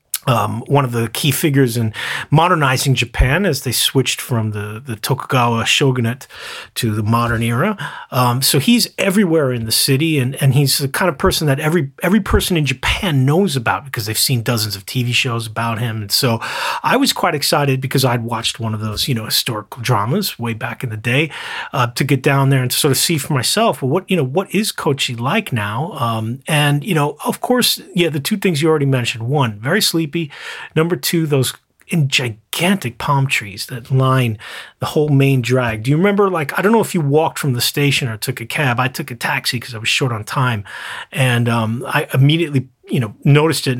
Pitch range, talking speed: 120-160 Hz, 215 wpm